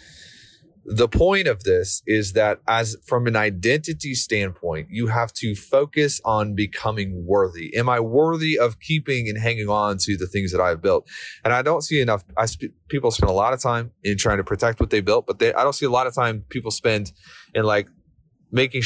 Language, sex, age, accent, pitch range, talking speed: English, male, 30-49, American, 100-130 Hz, 205 wpm